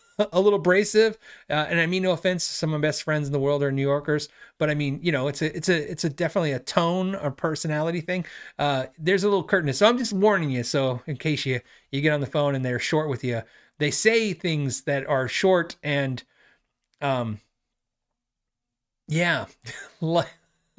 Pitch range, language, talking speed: 130-175 Hz, English, 200 wpm